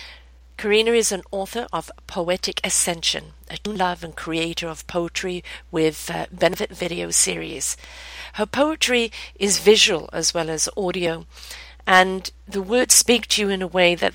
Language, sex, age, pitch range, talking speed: English, female, 50-69, 165-200 Hz, 155 wpm